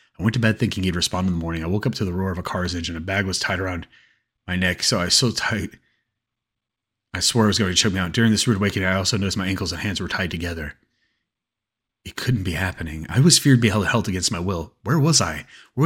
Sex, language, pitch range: male, English, 80-110 Hz